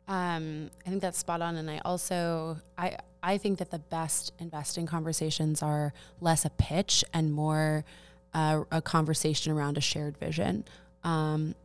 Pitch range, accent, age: 150-165 Hz, American, 20-39